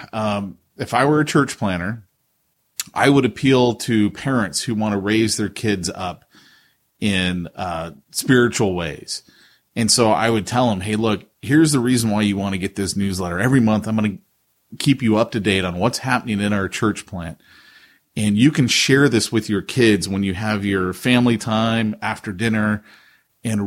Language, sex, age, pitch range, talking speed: English, male, 30-49, 100-125 Hz, 190 wpm